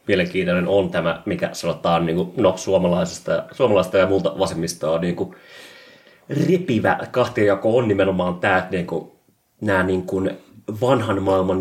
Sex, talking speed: male, 110 wpm